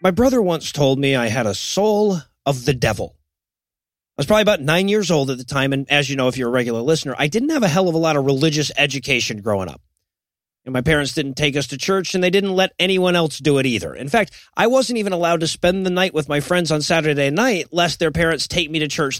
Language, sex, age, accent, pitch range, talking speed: English, male, 30-49, American, 145-195 Hz, 265 wpm